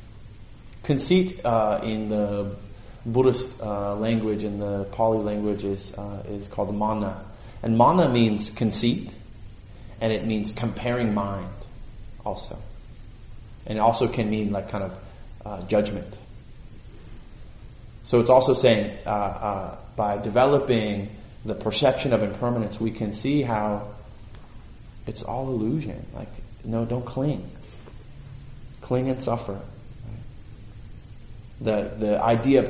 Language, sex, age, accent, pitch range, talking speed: English, male, 20-39, American, 105-120 Hz, 120 wpm